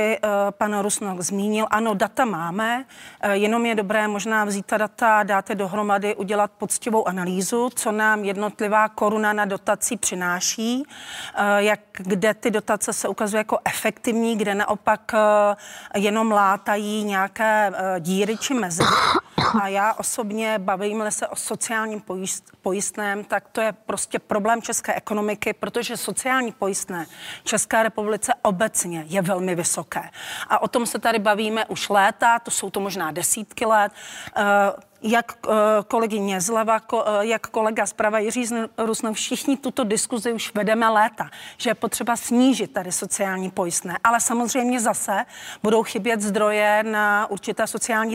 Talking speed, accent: 140 wpm, native